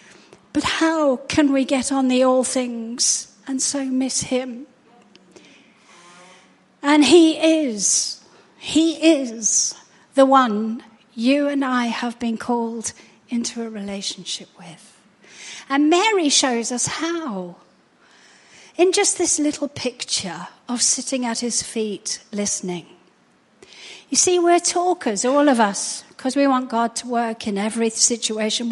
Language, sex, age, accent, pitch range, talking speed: English, female, 40-59, British, 220-295 Hz, 130 wpm